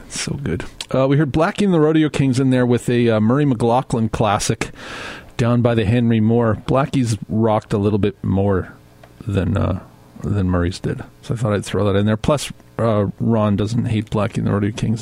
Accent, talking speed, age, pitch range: American, 210 wpm, 40-59, 105-140 Hz